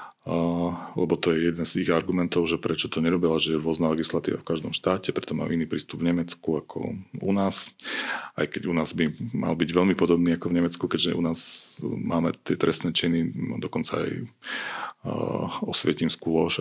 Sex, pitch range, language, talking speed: male, 85-95 Hz, Slovak, 190 wpm